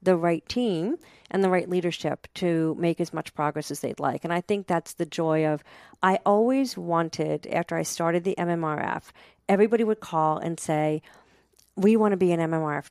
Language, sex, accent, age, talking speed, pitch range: English, female, American, 50-69, 190 wpm, 160-195 Hz